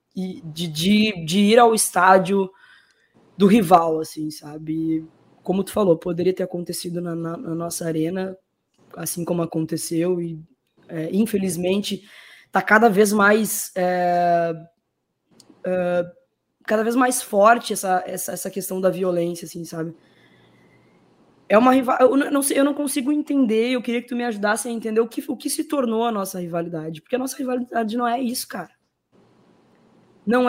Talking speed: 160 wpm